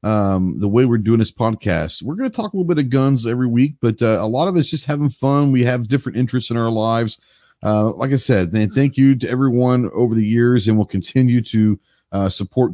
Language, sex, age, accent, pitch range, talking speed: English, male, 40-59, American, 105-135 Hz, 240 wpm